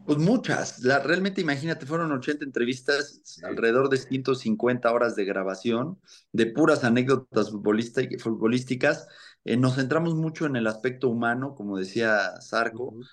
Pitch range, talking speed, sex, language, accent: 115-145 Hz, 135 wpm, male, English, Mexican